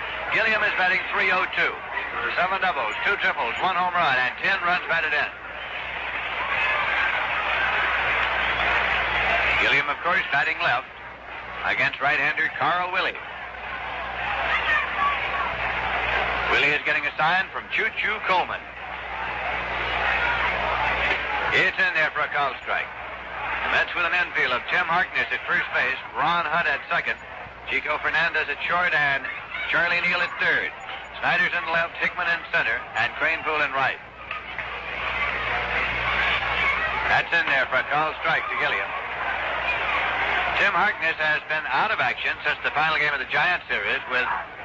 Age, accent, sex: 60-79, American, male